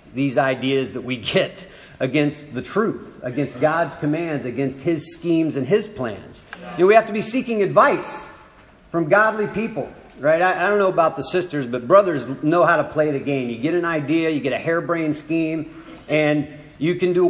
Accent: American